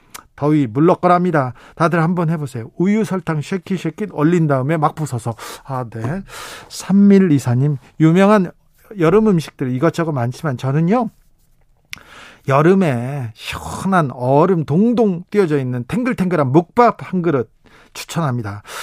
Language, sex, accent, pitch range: Korean, male, native, 130-180 Hz